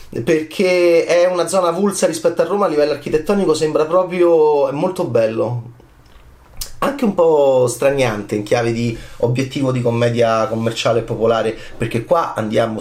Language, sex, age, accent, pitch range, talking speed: Italian, male, 30-49, native, 120-165 Hz, 150 wpm